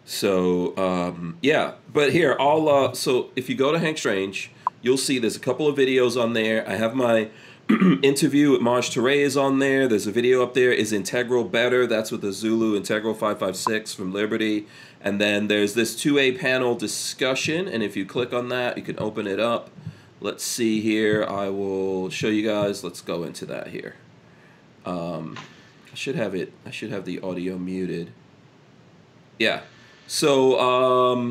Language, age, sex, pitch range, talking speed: English, 30-49, male, 105-130 Hz, 180 wpm